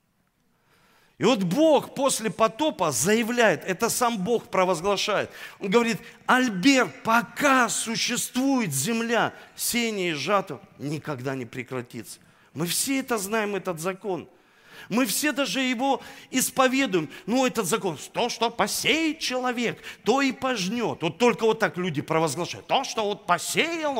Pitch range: 190-260 Hz